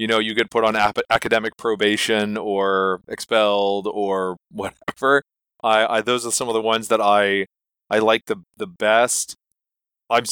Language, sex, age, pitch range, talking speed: English, male, 20-39, 110-130 Hz, 165 wpm